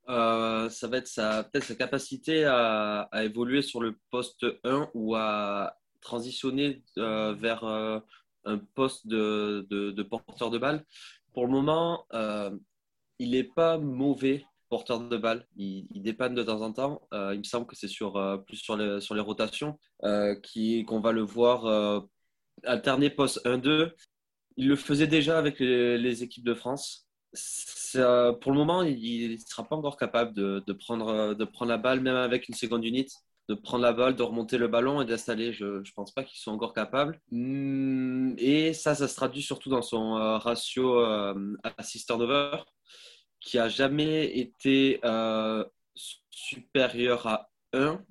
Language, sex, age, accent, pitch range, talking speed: French, male, 20-39, French, 110-135 Hz, 175 wpm